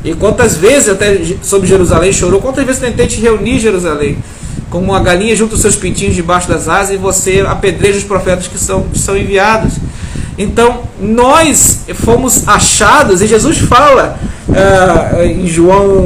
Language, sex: Portuguese, male